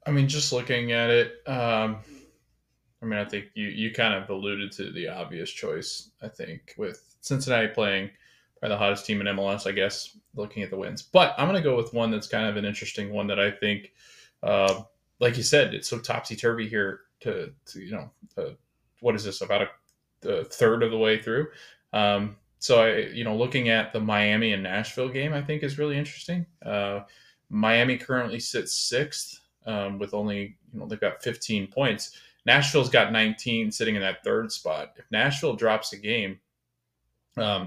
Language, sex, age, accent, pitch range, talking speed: English, male, 20-39, American, 100-125 Hz, 195 wpm